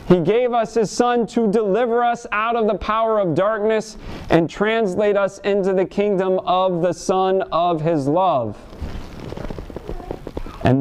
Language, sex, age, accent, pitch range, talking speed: English, male, 30-49, American, 170-230 Hz, 150 wpm